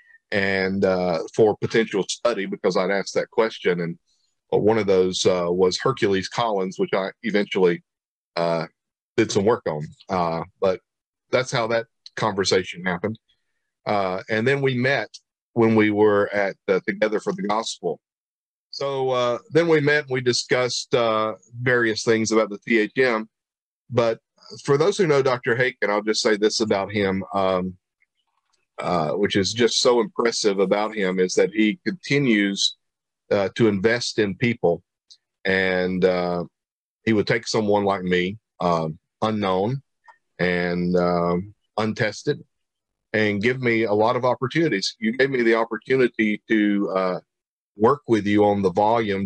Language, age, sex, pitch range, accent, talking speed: English, 40-59, male, 95-115 Hz, American, 150 wpm